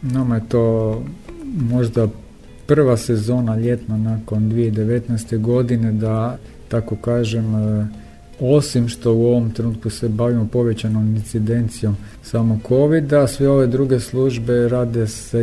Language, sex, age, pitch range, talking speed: Croatian, male, 50-69, 110-120 Hz, 115 wpm